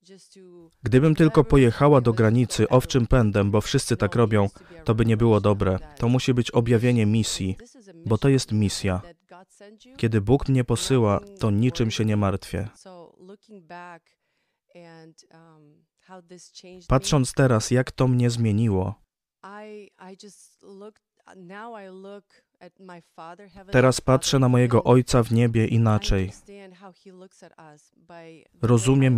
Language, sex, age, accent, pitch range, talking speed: Polish, male, 20-39, native, 110-165 Hz, 105 wpm